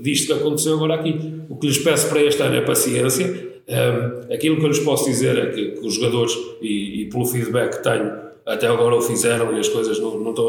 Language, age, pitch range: Portuguese, 40-59, 130-145 Hz